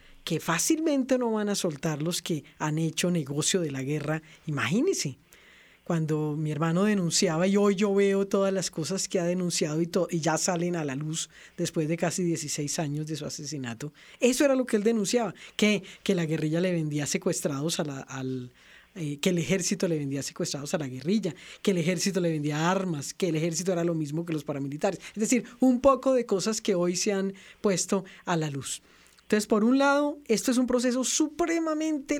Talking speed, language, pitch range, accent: 205 wpm, Spanish, 165-220 Hz, Colombian